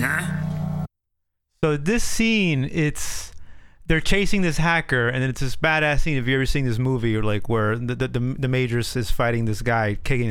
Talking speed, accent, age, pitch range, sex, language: 190 wpm, American, 30-49, 105-150 Hz, male, English